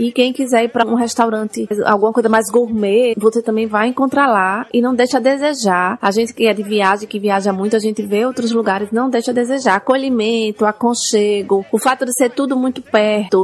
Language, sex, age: Portuguese, female, 20-39